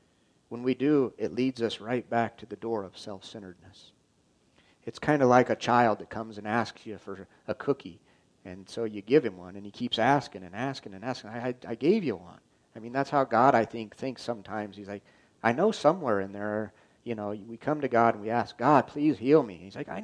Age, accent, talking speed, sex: 40-59, American, 240 wpm, male